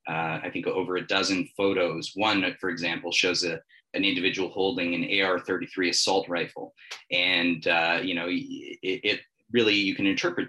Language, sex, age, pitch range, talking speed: English, male, 30-49, 90-110 Hz, 160 wpm